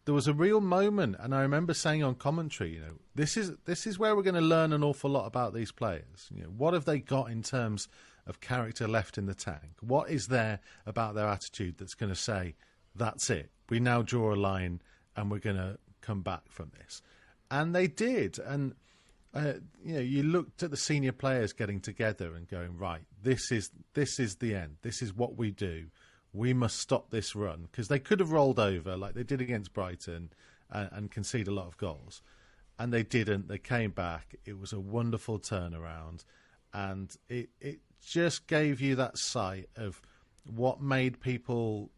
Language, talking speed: English, 205 wpm